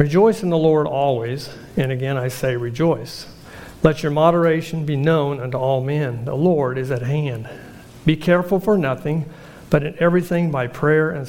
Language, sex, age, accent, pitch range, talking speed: English, male, 50-69, American, 130-155 Hz, 175 wpm